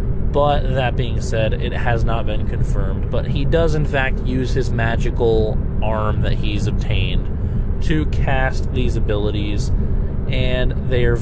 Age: 30-49